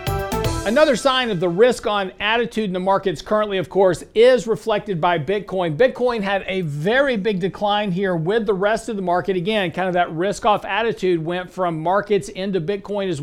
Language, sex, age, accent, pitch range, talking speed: English, male, 50-69, American, 180-215 Hz, 195 wpm